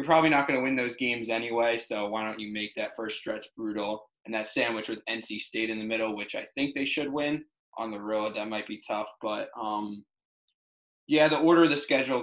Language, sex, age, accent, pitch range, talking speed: English, male, 20-39, American, 110-130 Hz, 235 wpm